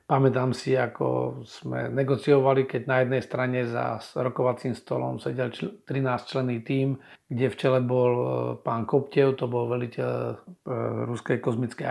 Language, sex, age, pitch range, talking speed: Slovak, male, 40-59, 120-140 Hz, 135 wpm